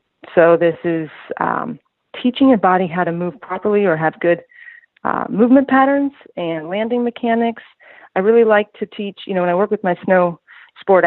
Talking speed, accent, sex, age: 185 wpm, American, female, 30-49